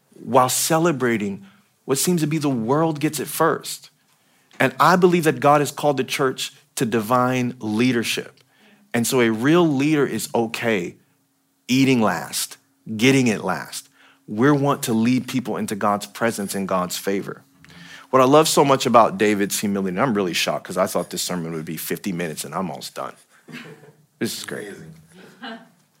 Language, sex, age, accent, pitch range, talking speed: English, male, 40-59, American, 110-150 Hz, 170 wpm